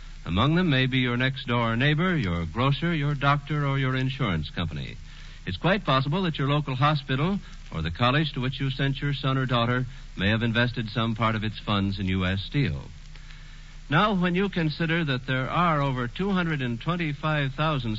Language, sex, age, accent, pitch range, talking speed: English, male, 60-79, American, 120-155 Hz, 175 wpm